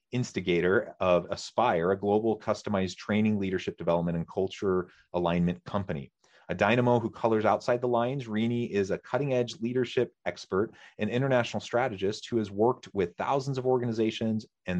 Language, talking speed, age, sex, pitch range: English, 150 wpm, 30-49, male, 95-115 Hz